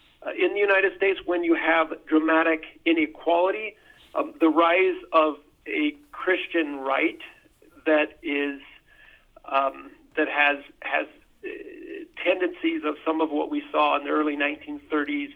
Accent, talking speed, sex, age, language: American, 135 wpm, male, 50-69, English